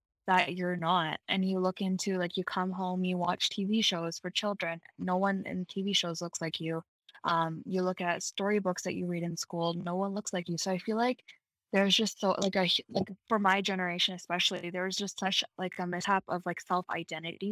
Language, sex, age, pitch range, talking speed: English, female, 10-29, 175-195 Hz, 215 wpm